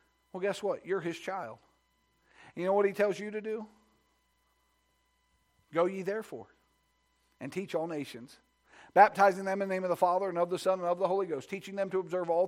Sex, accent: male, American